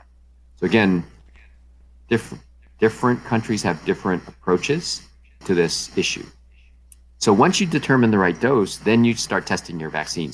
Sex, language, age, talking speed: male, English, 40-59, 135 wpm